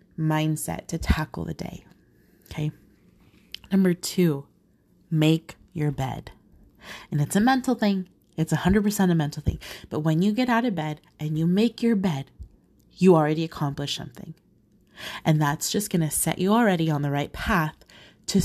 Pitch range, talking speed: 150-195 Hz, 160 wpm